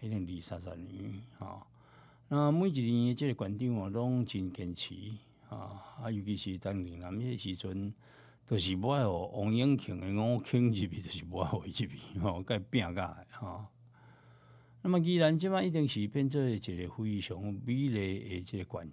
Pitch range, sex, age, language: 100-140 Hz, male, 60-79, Chinese